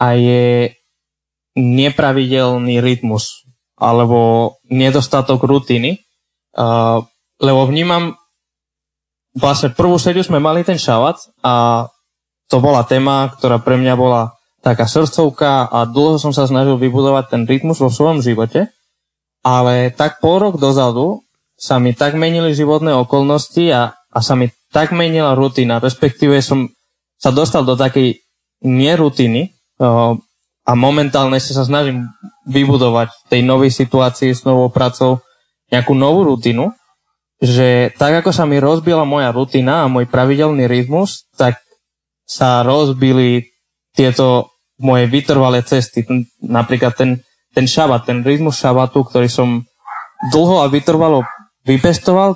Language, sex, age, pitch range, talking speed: Slovak, male, 20-39, 120-145 Hz, 125 wpm